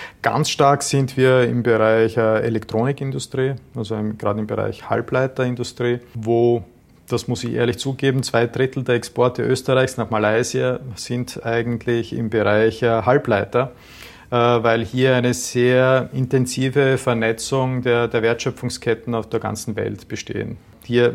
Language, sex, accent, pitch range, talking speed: German, male, Austrian, 115-130 Hz, 130 wpm